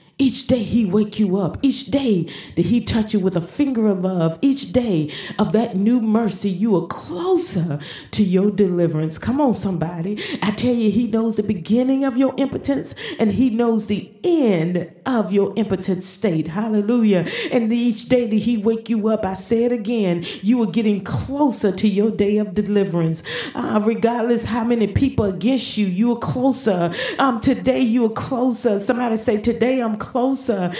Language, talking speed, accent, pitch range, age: English, 185 wpm, American, 200-245 Hz, 40-59